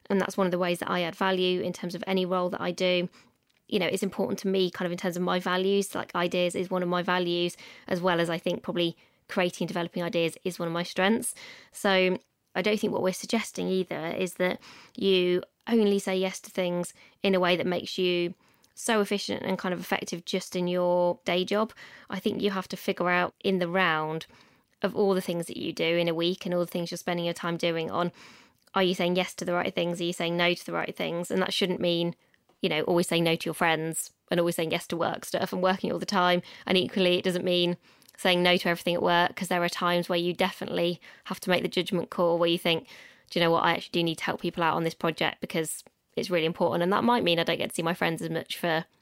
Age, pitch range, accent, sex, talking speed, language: 20-39, 175-195 Hz, British, female, 265 wpm, English